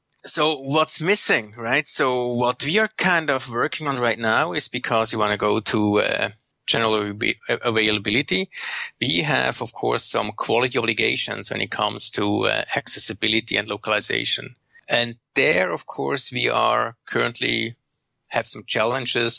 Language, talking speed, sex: English, 150 wpm, male